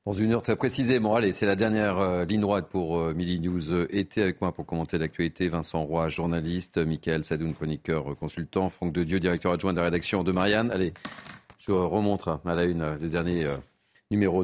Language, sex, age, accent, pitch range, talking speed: French, male, 40-59, French, 85-100 Hz, 195 wpm